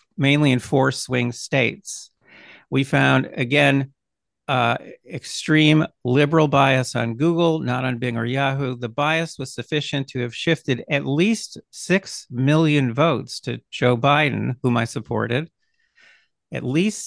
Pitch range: 130-170 Hz